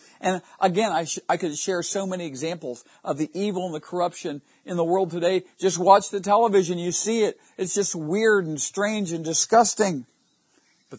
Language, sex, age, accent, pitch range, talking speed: English, male, 50-69, American, 130-175 Hz, 185 wpm